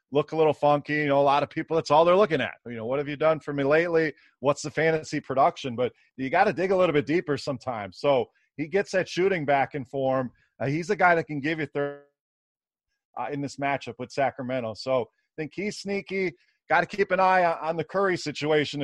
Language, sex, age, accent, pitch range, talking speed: English, male, 30-49, American, 135-165 Hz, 240 wpm